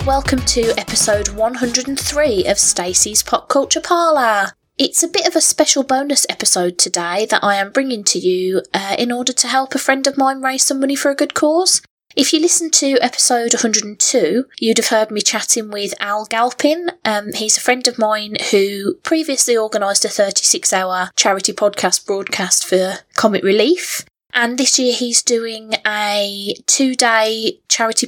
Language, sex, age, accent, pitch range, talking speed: English, female, 20-39, British, 200-275 Hz, 170 wpm